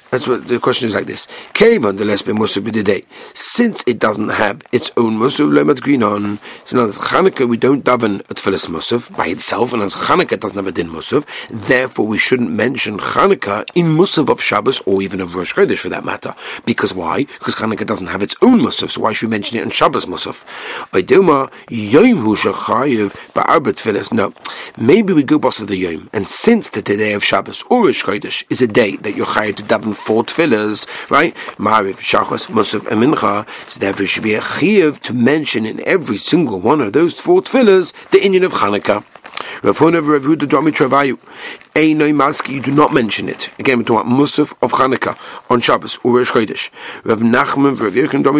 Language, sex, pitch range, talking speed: English, male, 110-150 Hz, 195 wpm